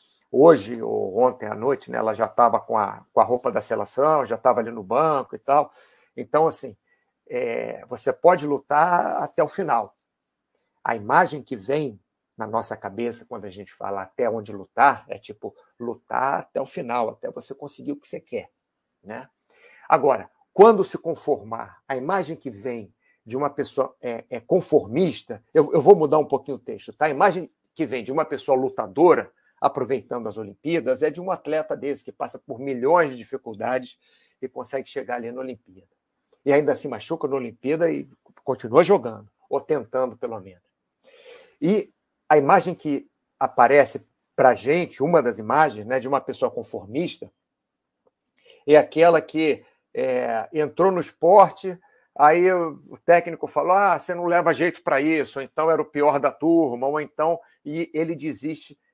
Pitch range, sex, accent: 130-175 Hz, male, Brazilian